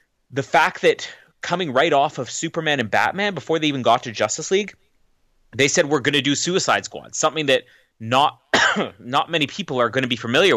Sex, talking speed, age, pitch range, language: male, 205 wpm, 30-49, 120-160 Hz, English